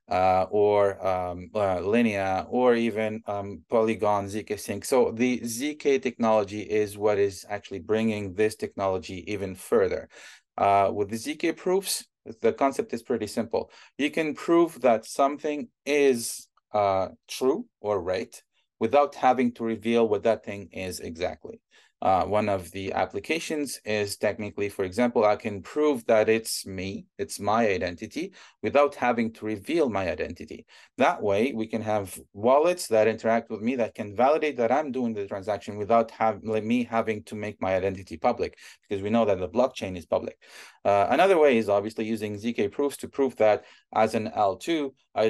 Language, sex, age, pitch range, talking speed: English, male, 30-49, 100-125 Hz, 165 wpm